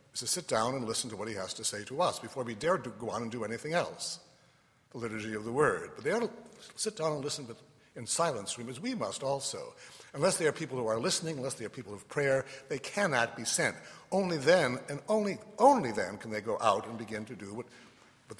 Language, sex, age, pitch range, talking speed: English, male, 60-79, 115-160 Hz, 250 wpm